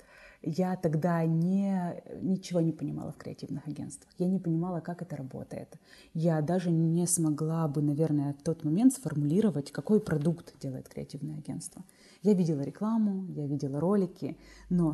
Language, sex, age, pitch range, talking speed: Ukrainian, female, 20-39, 150-180 Hz, 145 wpm